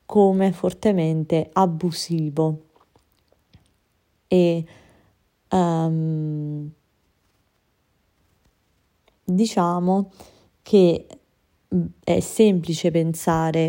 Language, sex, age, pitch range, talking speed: Italian, female, 30-49, 160-180 Hz, 45 wpm